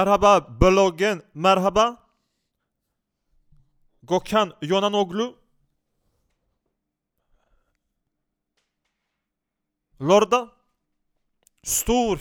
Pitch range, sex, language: 165-200 Hz, male, Swedish